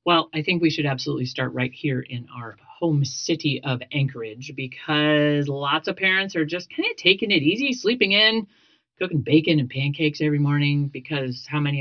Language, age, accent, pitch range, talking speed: English, 40-59, American, 140-195 Hz, 190 wpm